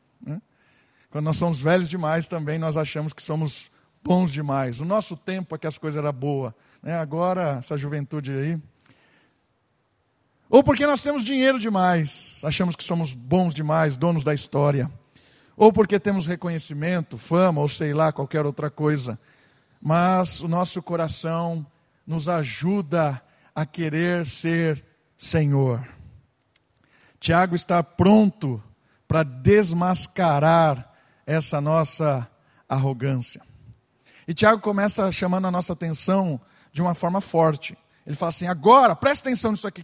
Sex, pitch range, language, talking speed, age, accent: male, 150-195 Hz, Portuguese, 135 wpm, 50-69, Brazilian